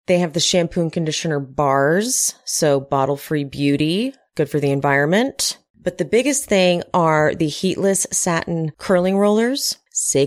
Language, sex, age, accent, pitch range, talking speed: English, female, 30-49, American, 155-205 Hz, 145 wpm